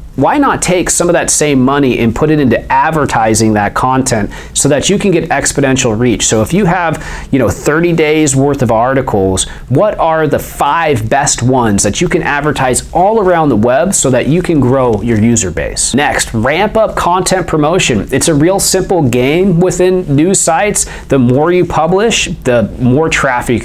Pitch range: 125-175 Hz